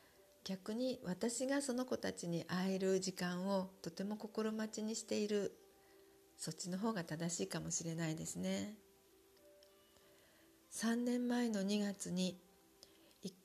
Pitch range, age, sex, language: 175-220 Hz, 50-69, female, Japanese